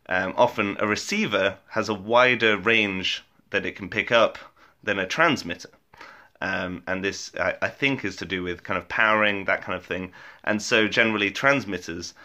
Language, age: English, 30-49